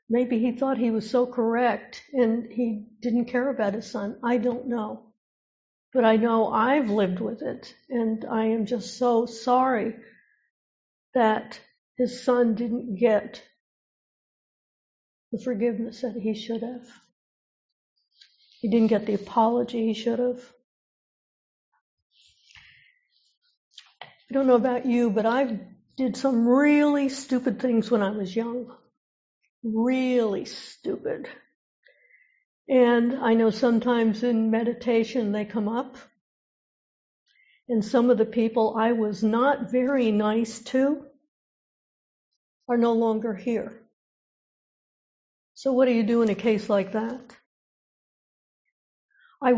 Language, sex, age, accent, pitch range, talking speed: English, female, 60-79, American, 220-250 Hz, 125 wpm